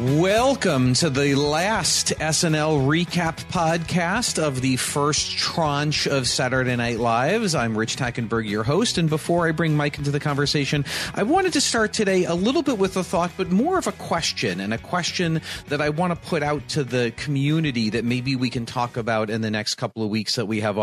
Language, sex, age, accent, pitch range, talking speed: English, male, 40-59, American, 115-160 Hz, 205 wpm